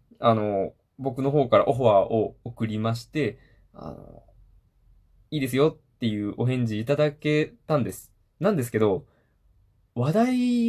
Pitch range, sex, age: 105-150 Hz, male, 20-39